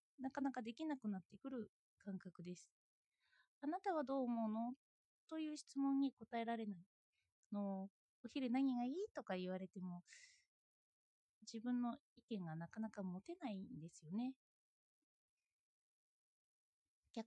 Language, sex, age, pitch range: Japanese, female, 20-39, 200-285 Hz